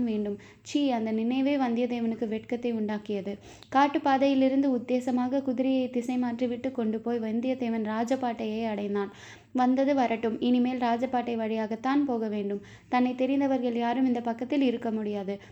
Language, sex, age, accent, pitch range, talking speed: Tamil, female, 20-39, native, 225-260 Hz, 110 wpm